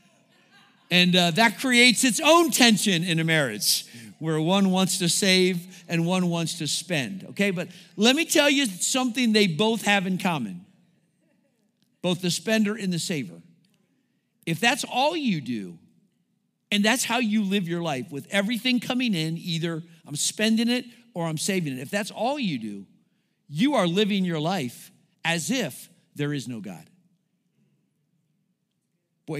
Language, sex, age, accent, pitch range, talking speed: English, male, 50-69, American, 170-235 Hz, 160 wpm